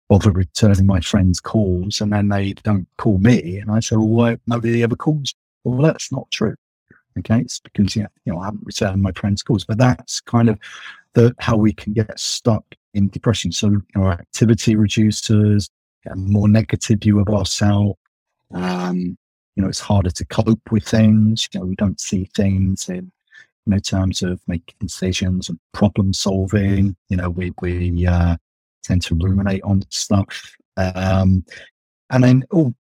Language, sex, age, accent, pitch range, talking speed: English, male, 30-49, British, 95-110 Hz, 180 wpm